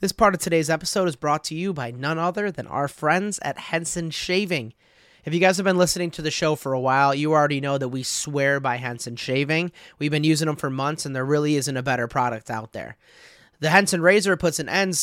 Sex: male